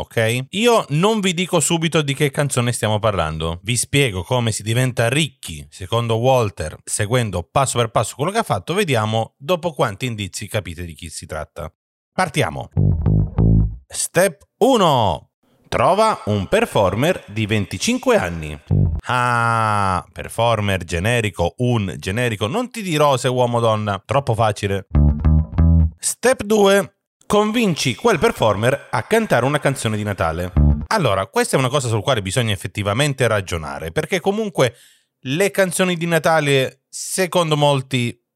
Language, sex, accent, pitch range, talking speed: Italian, male, native, 100-145 Hz, 140 wpm